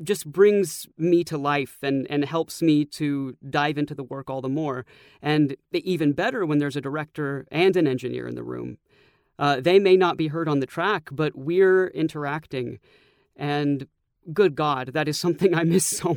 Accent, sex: American, male